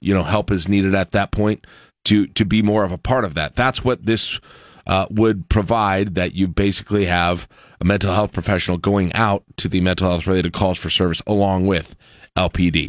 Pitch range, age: 100-130 Hz, 40-59